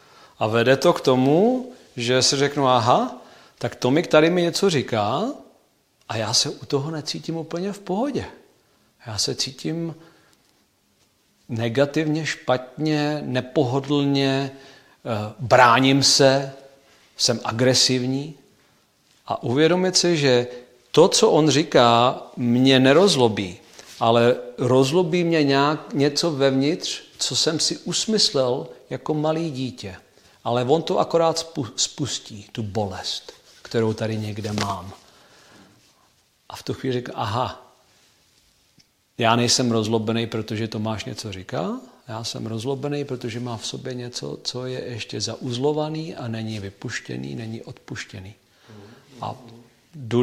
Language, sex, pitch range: Czech, male, 120-150 Hz